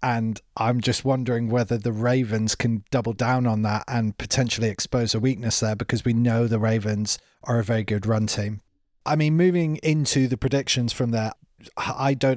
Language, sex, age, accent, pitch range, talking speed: English, male, 30-49, British, 115-140 Hz, 190 wpm